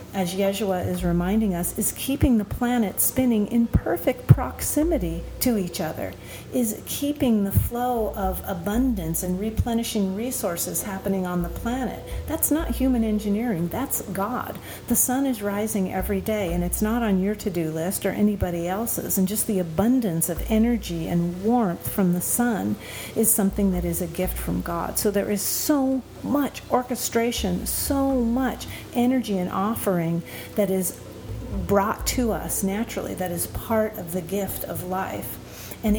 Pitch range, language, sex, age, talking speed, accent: 185-235 Hz, English, female, 40-59, 160 wpm, American